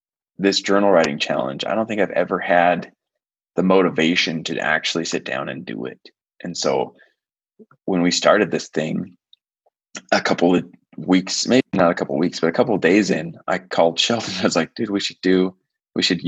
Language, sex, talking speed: English, male, 190 wpm